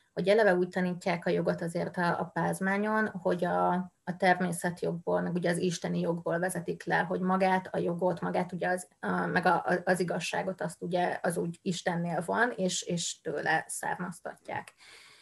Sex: female